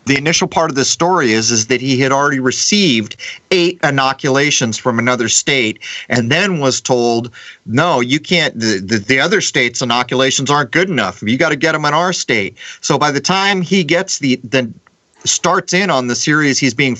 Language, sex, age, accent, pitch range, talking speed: English, male, 40-59, American, 120-150 Hz, 200 wpm